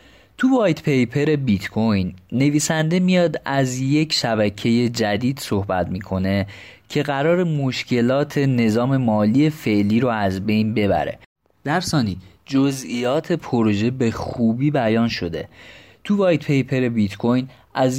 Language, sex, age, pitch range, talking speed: Persian, male, 30-49, 105-140 Hz, 115 wpm